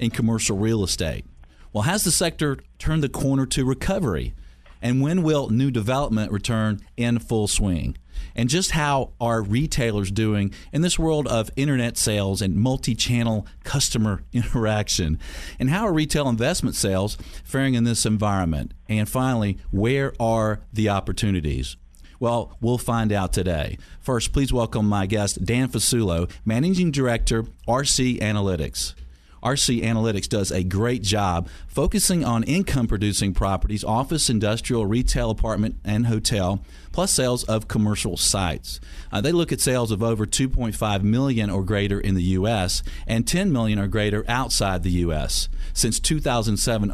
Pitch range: 95-125 Hz